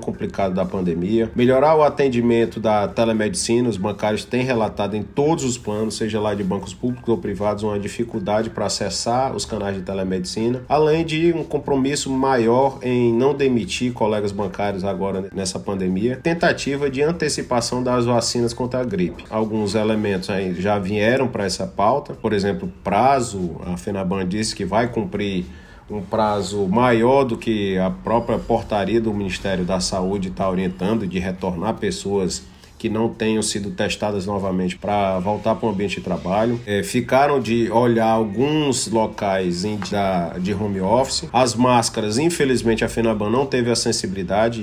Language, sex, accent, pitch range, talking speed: Portuguese, male, Brazilian, 100-120 Hz, 155 wpm